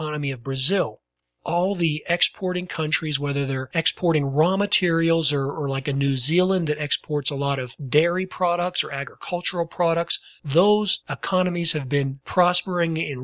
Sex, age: male, 40-59